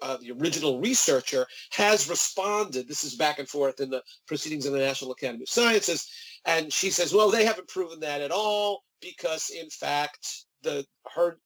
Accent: American